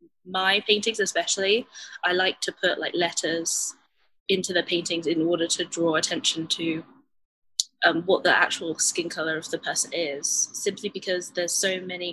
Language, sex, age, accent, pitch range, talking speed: English, female, 20-39, British, 165-205 Hz, 165 wpm